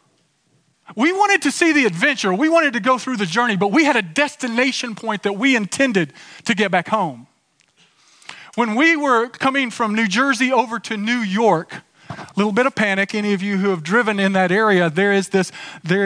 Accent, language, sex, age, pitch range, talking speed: American, English, male, 40-59, 180-240 Hz, 205 wpm